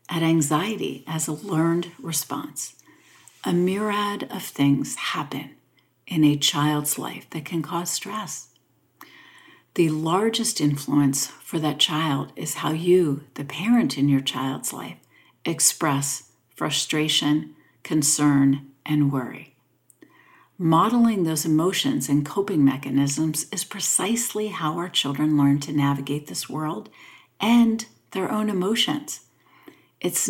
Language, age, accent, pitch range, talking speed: English, 60-79, American, 145-185 Hz, 120 wpm